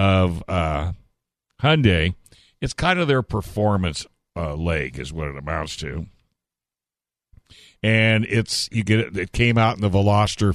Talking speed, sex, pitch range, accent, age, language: 150 wpm, male, 85-110 Hz, American, 60-79, English